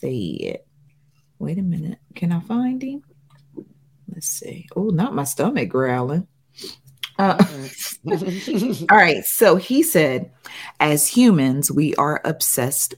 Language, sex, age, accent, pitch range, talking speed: English, female, 40-59, American, 135-205 Hz, 120 wpm